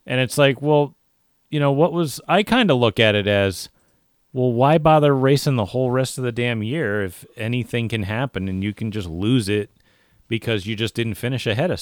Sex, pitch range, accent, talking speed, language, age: male, 105-145 Hz, American, 220 wpm, English, 30-49